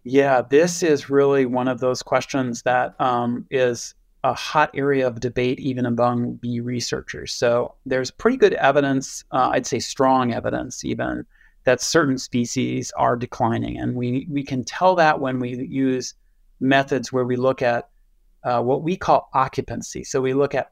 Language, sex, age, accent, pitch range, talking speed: English, male, 30-49, American, 125-140 Hz, 170 wpm